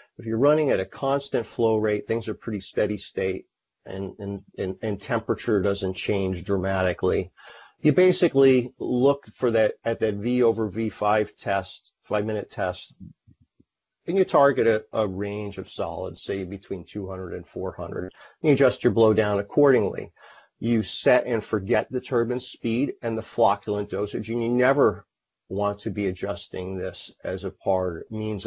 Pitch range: 95-115 Hz